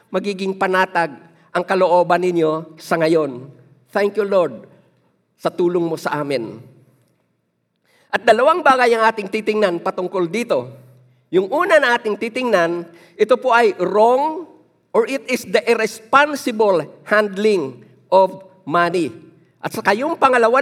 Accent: native